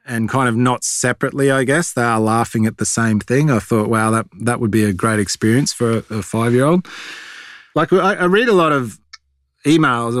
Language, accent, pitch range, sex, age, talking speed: English, Australian, 115-140 Hz, male, 20-39, 210 wpm